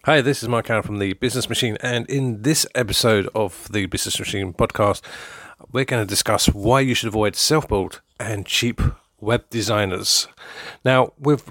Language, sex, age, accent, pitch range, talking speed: English, male, 40-59, British, 100-125 Hz, 175 wpm